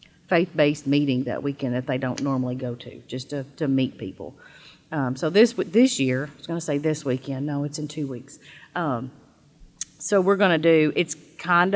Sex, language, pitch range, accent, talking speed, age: female, English, 140-160 Hz, American, 195 wpm, 40-59